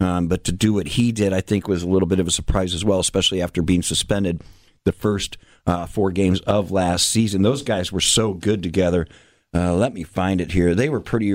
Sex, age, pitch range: male, 50-69, 95-115 Hz